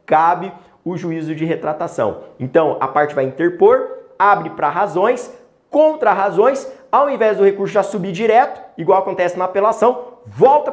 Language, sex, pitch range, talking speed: Portuguese, male, 160-205 Hz, 150 wpm